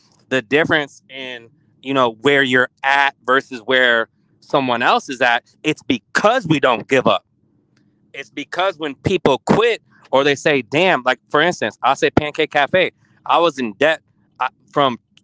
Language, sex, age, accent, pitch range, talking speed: English, male, 20-39, American, 130-160 Hz, 165 wpm